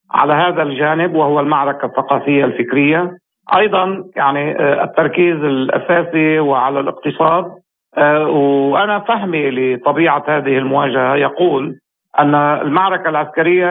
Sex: male